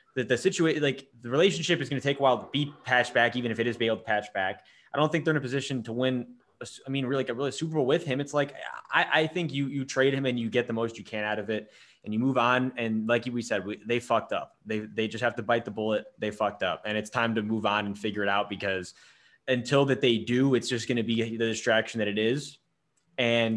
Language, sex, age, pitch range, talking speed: English, male, 20-39, 110-140 Hz, 285 wpm